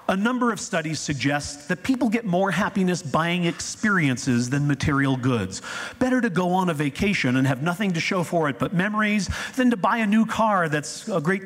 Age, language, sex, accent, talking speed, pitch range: 40-59, English, male, American, 205 wpm, 140-215 Hz